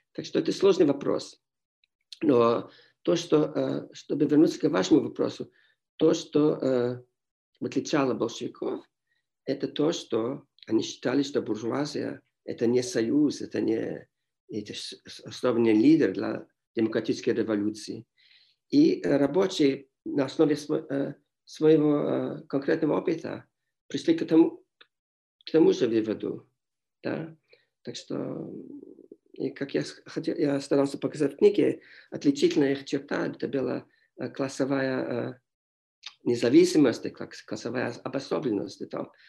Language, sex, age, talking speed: Russian, male, 50-69, 100 wpm